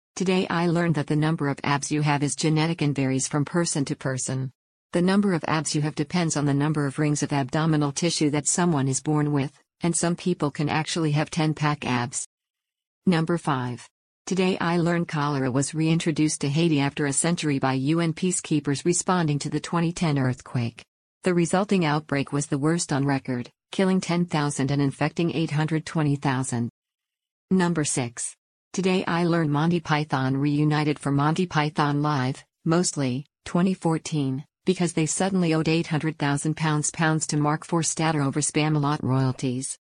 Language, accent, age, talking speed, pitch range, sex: English, American, 50-69, 160 wpm, 140-170 Hz, female